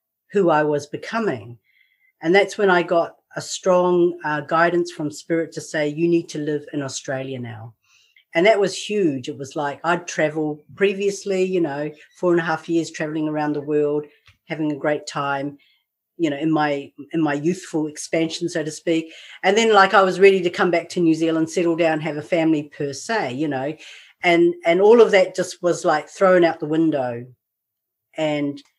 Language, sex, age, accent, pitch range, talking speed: English, female, 50-69, Australian, 150-185 Hz, 195 wpm